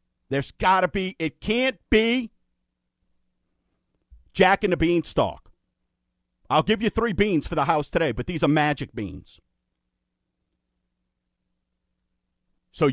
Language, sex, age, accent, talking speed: English, male, 50-69, American, 105 wpm